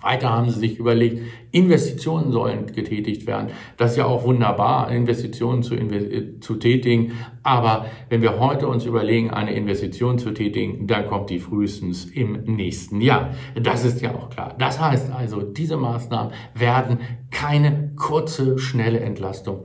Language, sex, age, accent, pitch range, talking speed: German, male, 50-69, German, 115-135 Hz, 155 wpm